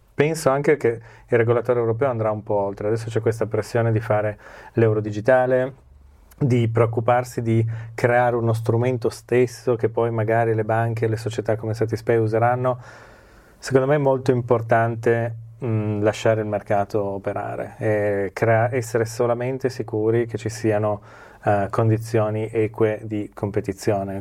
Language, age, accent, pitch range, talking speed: Italian, 30-49, native, 105-115 Hz, 145 wpm